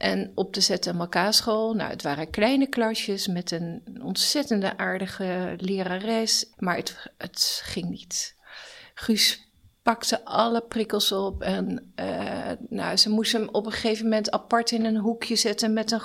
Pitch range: 195-225 Hz